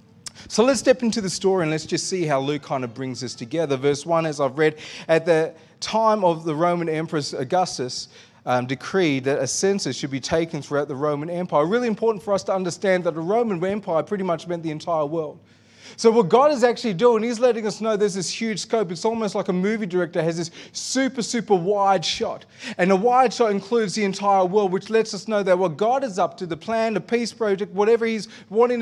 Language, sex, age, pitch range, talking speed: English, male, 30-49, 170-220 Hz, 230 wpm